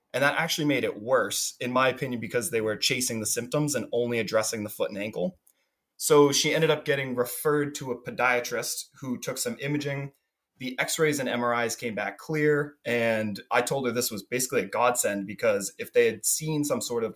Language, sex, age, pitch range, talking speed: English, male, 20-39, 115-150 Hz, 205 wpm